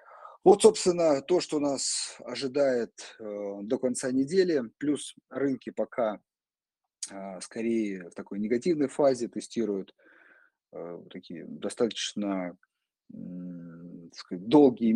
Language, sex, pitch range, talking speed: Russian, male, 100-130 Hz, 85 wpm